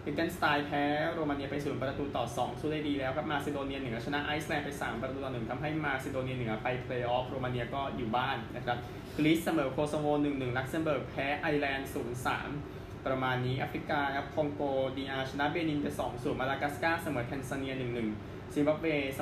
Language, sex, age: Thai, male, 20-39